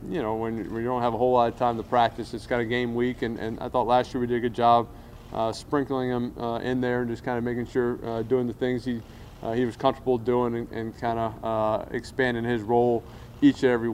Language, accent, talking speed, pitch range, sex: English, American, 275 wpm, 115-125 Hz, male